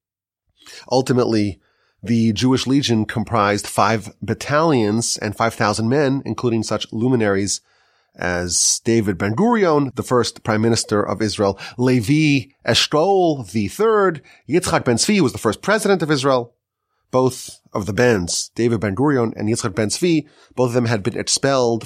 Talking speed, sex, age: 130 wpm, male, 30-49